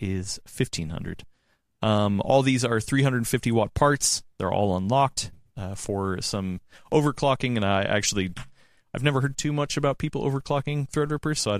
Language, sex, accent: English, male, American